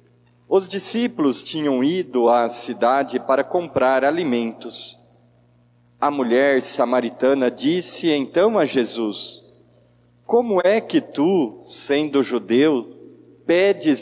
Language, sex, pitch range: Portuguese, male, 120-190 Hz